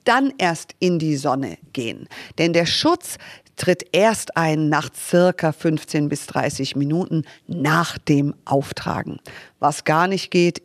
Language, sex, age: German, female, 50-69